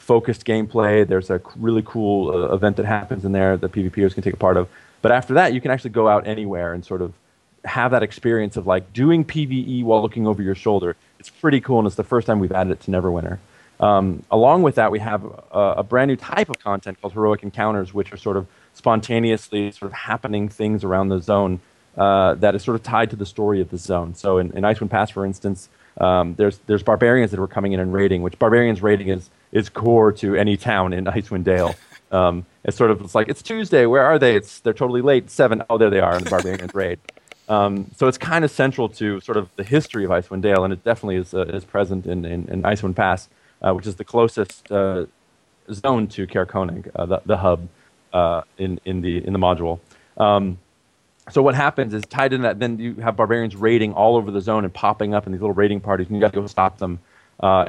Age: 30-49